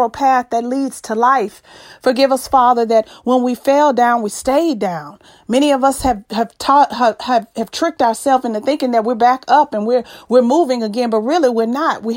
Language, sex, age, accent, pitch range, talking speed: English, female, 40-59, American, 240-285 Hz, 210 wpm